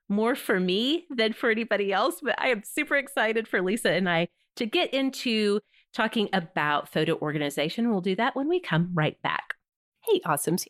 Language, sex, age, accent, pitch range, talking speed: English, female, 30-49, American, 175-265 Hz, 185 wpm